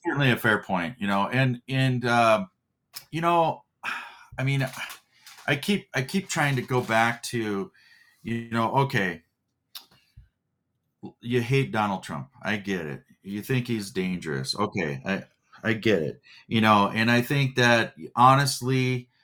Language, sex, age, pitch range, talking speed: English, male, 40-59, 110-135 Hz, 150 wpm